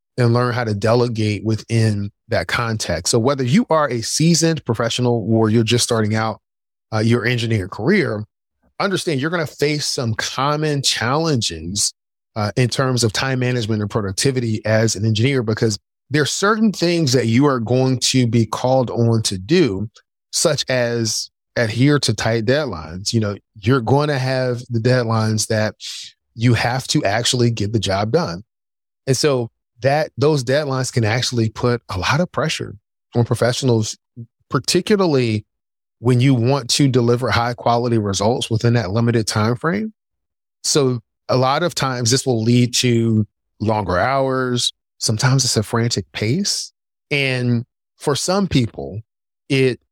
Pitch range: 110-130 Hz